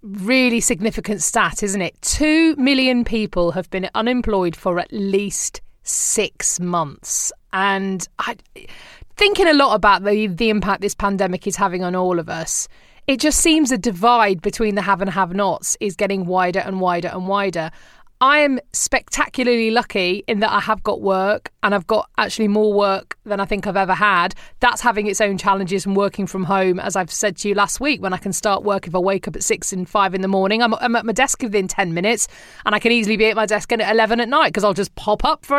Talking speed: 220 wpm